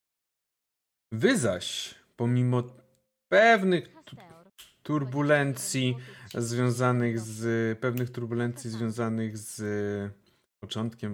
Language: Polish